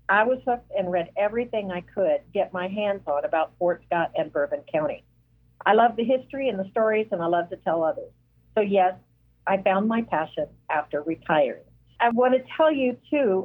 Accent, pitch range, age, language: American, 180-235 Hz, 50-69, English